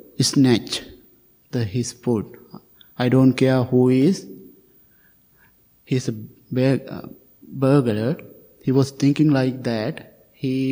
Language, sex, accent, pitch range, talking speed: English, male, Indian, 120-135 Hz, 110 wpm